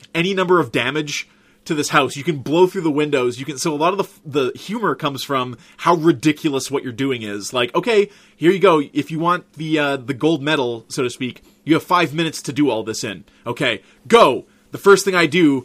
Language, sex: English, male